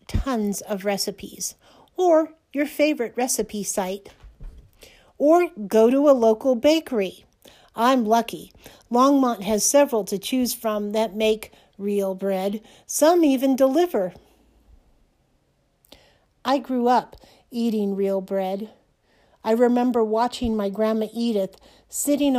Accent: American